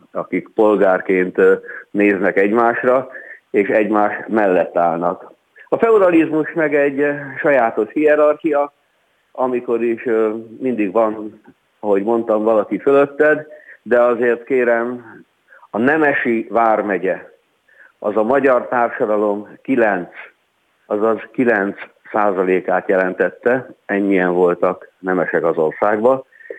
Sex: male